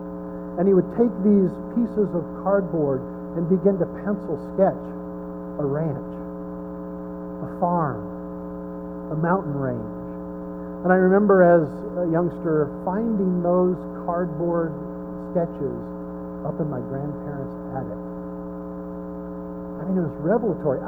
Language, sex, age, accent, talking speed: English, male, 50-69, American, 115 wpm